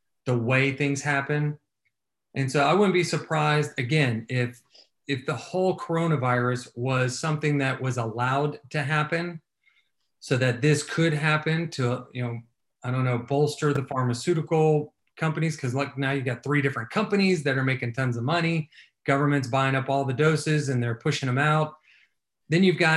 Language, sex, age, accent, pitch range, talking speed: English, male, 30-49, American, 125-155 Hz, 170 wpm